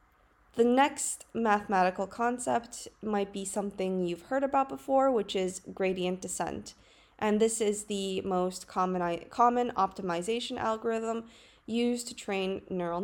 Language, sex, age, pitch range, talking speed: English, female, 20-39, 185-230 Hz, 130 wpm